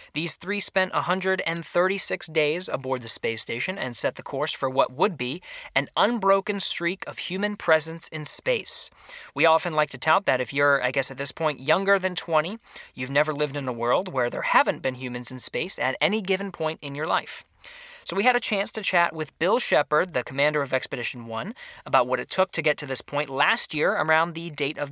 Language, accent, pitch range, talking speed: Danish, American, 140-185 Hz, 220 wpm